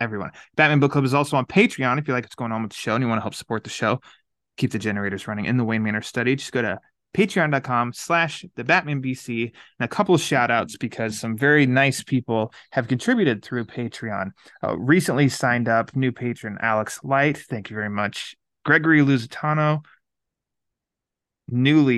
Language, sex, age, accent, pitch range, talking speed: English, male, 20-39, American, 115-145 Hz, 195 wpm